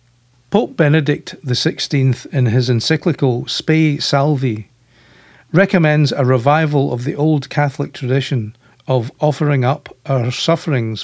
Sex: male